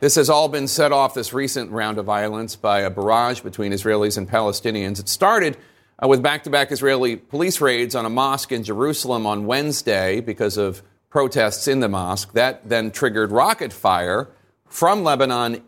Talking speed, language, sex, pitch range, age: 175 wpm, English, male, 105-135 Hz, 40-59